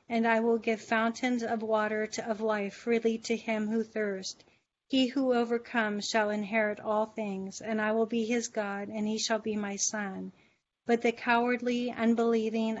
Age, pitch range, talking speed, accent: 40-59, 210-230 Hz, 175 wpm, American